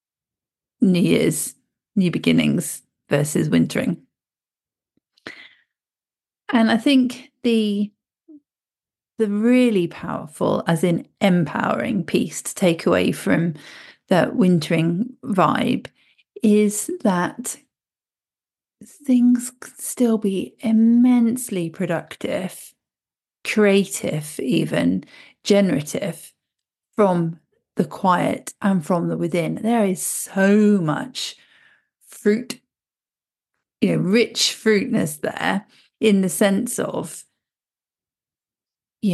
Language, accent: English, British